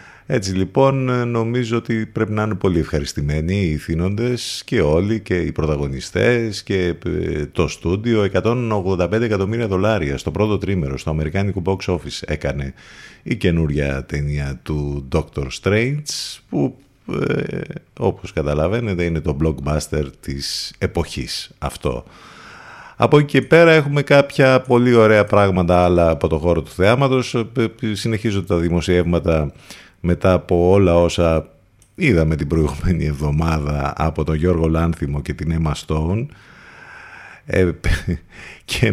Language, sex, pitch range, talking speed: Greek, male, 80-115 Hz, 125 wpm